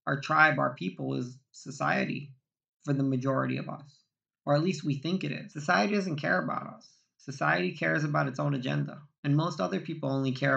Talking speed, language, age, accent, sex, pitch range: 200 wpm, English, 20-39, American, male, 135-155 Hz